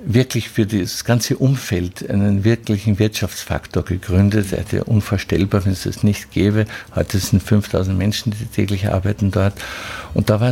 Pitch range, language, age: 100-115 Hz, German, 50-69